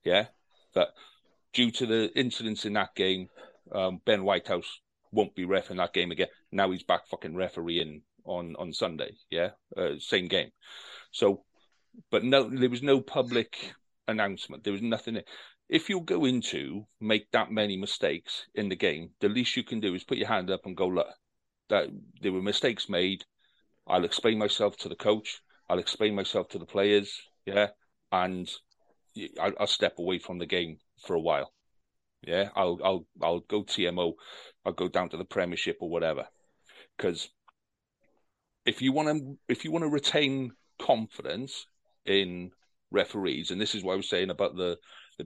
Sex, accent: male, British